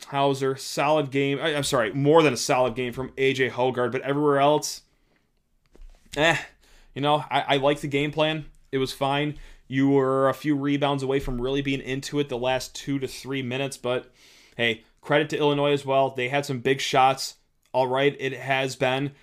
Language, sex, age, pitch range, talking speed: English, male, 20-39, 120-145 Hz, 195 wpm